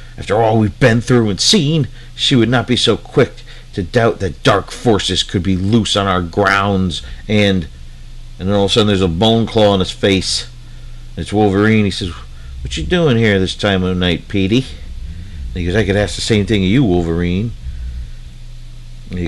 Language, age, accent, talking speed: English, 50-69, American, 195 wpm